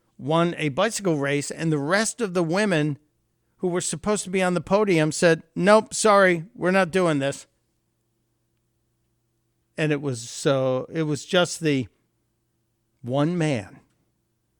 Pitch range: 125-165 Hz